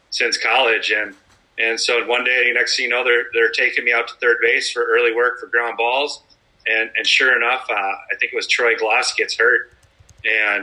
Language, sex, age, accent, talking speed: English, male, 30-49, American, 220 wpm